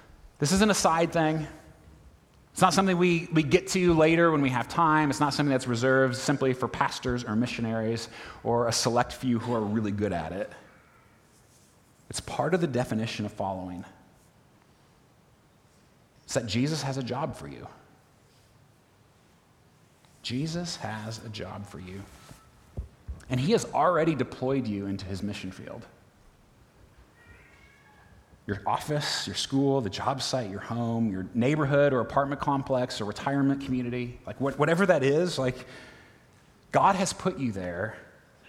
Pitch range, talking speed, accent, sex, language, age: 110-155 Hz, 150 wpm, American, male, English, 30-49